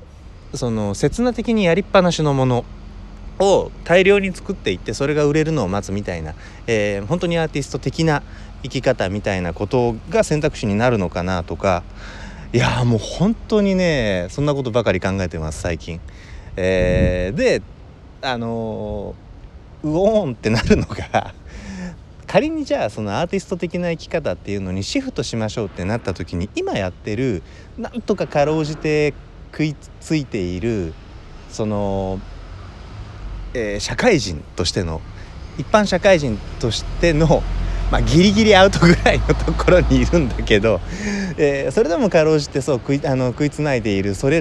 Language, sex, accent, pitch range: Japanese, male, native, 95-160 Hz